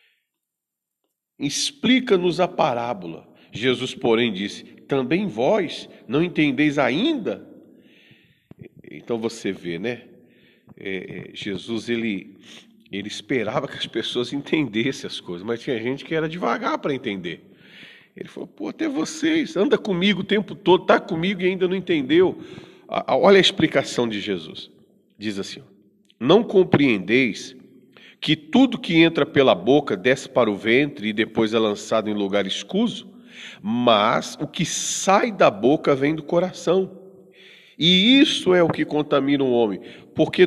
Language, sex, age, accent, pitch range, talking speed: Portuguese, male, 40-59, Brazilian, 120-185 Hz, 140 wpm